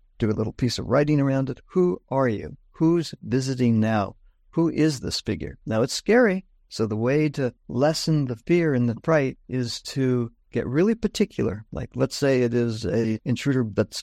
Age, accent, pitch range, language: 60-79, American, 115-160 Hz, English